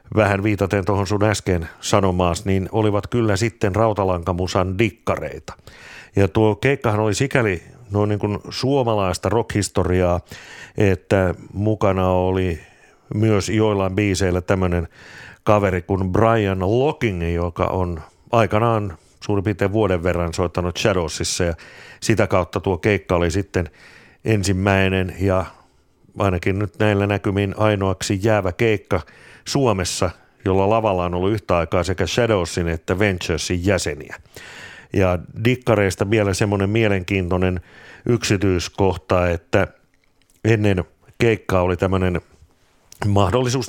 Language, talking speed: Finnish, 110 wpm